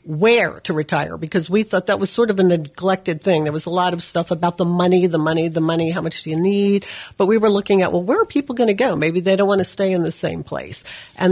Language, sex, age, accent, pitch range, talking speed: English, female, 50-69, American, 170-210 Hz, 285 wpm